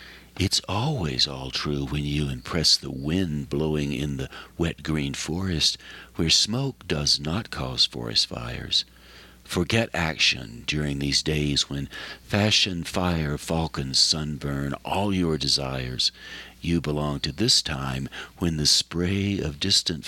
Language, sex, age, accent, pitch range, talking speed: English, male, 60-79, American, 70-95 Hz, 135 wpm